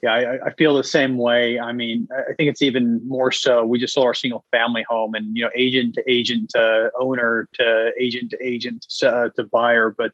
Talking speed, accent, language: 230 wpm, American, English